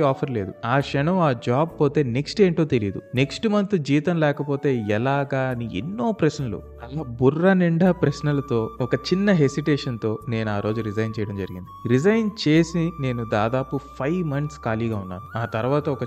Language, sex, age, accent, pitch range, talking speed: Telugu, male, 30-49, native, 110-145 Hz, 100 wpm